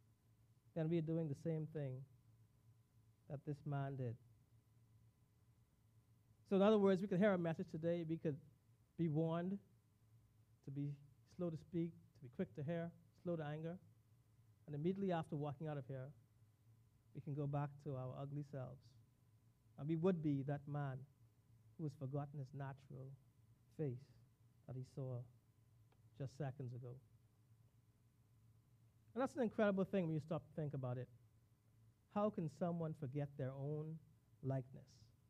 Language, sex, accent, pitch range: English, male, American, 115-160 Hz